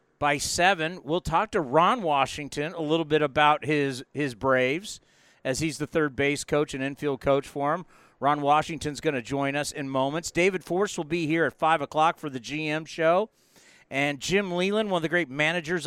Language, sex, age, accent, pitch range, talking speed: English, male, 50-69, American, 145-180 Hz, 200 wpm